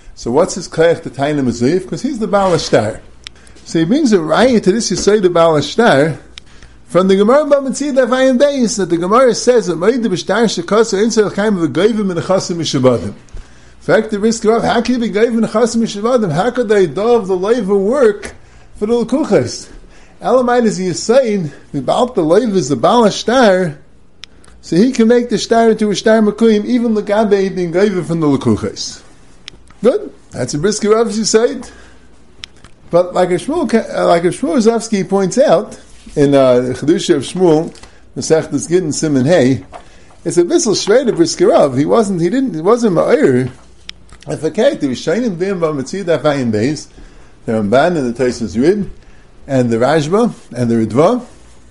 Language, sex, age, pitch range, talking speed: English, male, 30-49, 145-230 Hz, 190 wpm